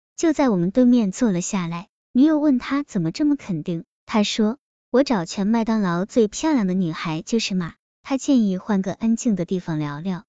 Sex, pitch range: male, 185-250 Hz